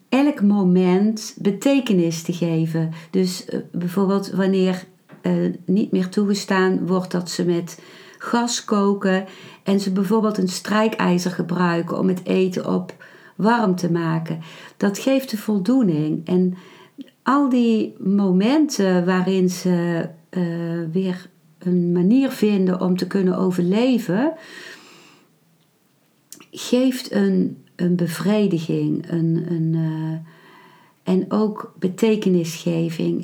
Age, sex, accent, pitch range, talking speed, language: 50-69, female, Dutch, 175-215 Hz, 105 wpm, Dutch